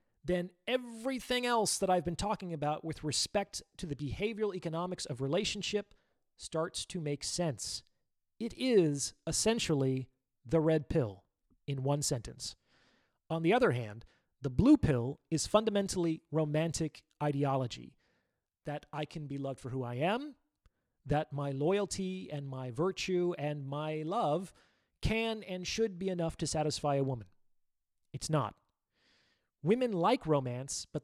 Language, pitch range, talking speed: English, 135-180 Hz, 140 wpm